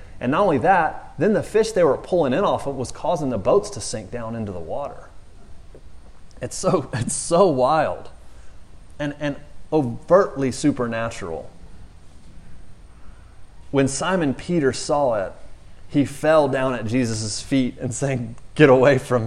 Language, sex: English, male